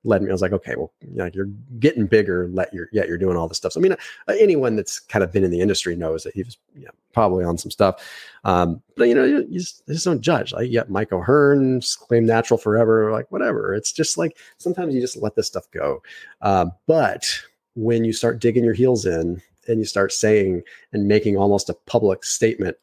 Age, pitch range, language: 30-49, 105-145 Hz, English